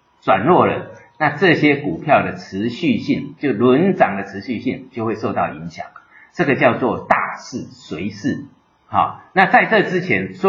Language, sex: Chinese, male